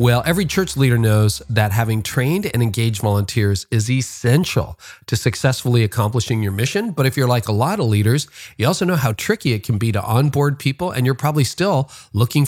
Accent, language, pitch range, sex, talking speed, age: American, English, 105-135 Hz, male, 200 wpm, 40-59